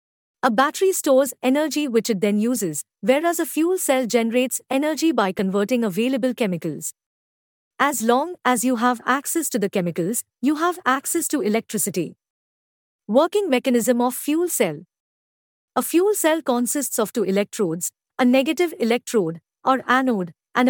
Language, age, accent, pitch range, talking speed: English, 50-69, Indian, 210-280 Hz, 145 wpm